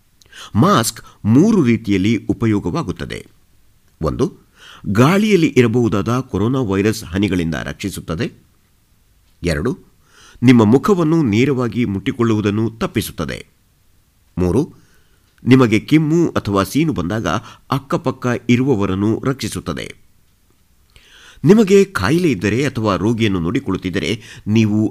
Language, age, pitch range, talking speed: Kannada, 50-69, 95-125 Hz, 80 wpm